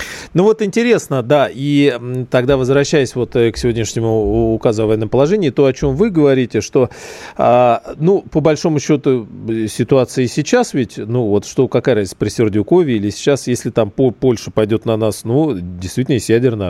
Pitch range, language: 105-140 Hz, Russian